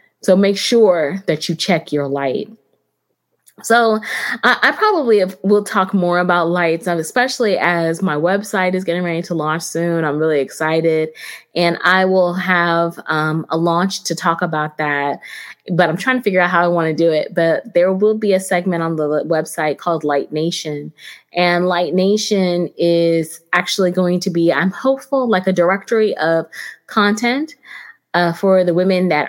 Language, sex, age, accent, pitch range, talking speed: English, female, 20-39, American, 165-195 Hz, 175 wpm